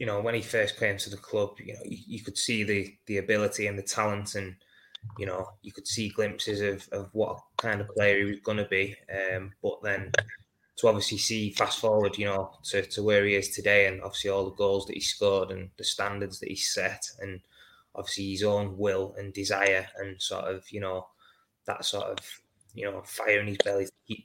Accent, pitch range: British, 95-100 Hz